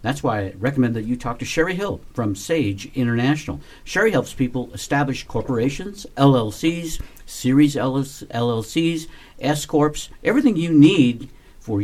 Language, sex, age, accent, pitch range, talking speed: English, male, 60-79, American, 105-150 Hz, 135 wpm